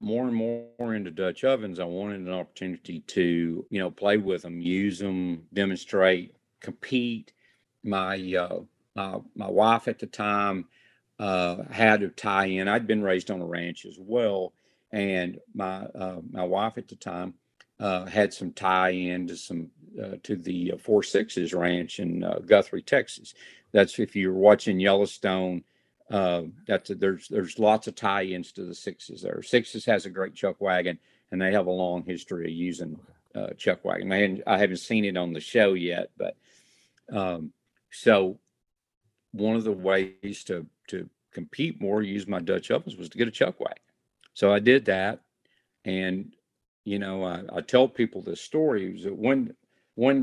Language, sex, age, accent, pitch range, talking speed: English, male, 50-69, American, 90-110 Hz, 175 wpm